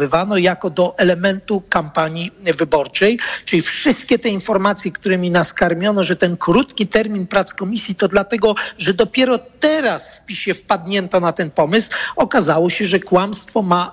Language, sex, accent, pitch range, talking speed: Polish, male, native, 165-210 Hz, 140 wpm